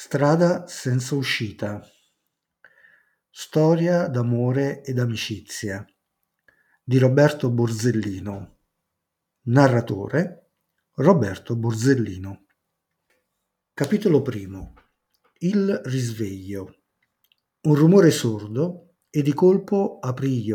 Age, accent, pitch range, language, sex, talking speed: 50-69, native, 110-155 Hz, Italian, male, 75 wpm